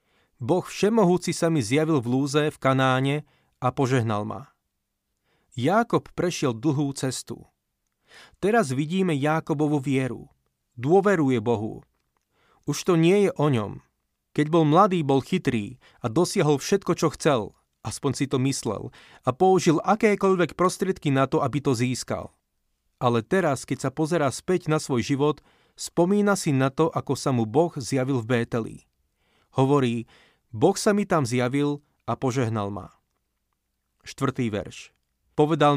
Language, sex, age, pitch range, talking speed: Slovak, male, 30-49, 130-165 Hz, 140 wpm